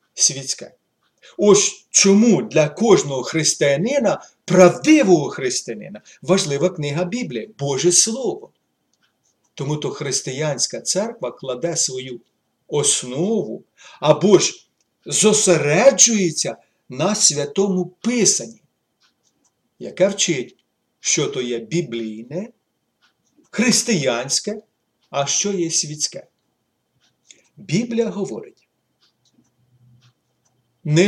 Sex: male